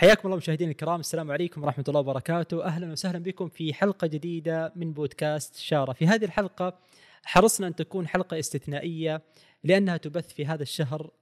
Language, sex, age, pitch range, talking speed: Arabic, male, 20-39, 150-185 Hz, 165 wpm